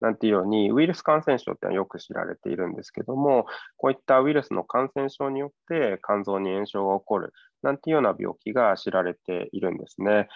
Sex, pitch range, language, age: male, 100-140 Hz, Japanese, 20-39